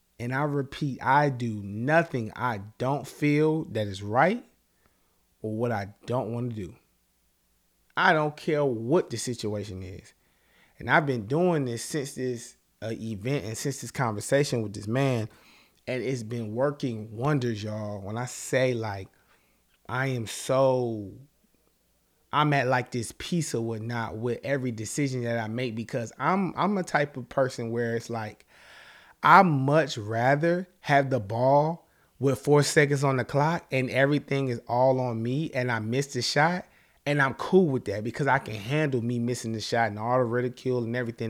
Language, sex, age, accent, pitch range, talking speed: English, male, 20-39, American, 115-145 Hz, 175 wpm